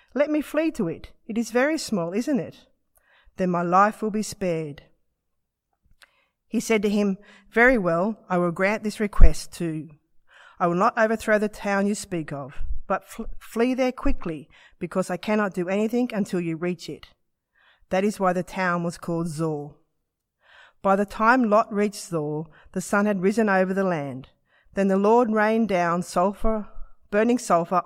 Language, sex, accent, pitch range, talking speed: English, female, Australian, 165-210 Hz, 170 wpm